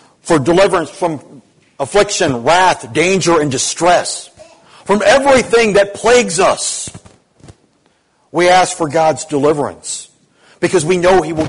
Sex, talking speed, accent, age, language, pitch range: male, 120 wpm, American, 50-69, English, 140-185 Hz